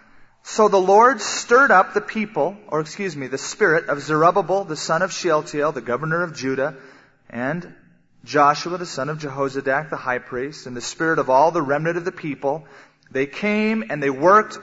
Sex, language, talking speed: male, English, 190 wpm